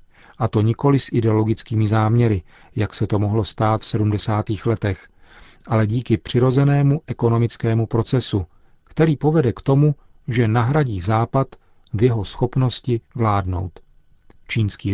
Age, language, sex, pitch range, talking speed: 40-59, Czech, male, 105-135 Hz, 125 wpm